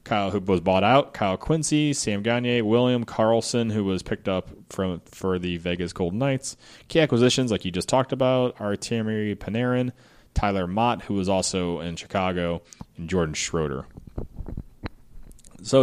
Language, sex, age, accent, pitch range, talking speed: English, male, 30-49, American, 95-120 Hz, 160 wpm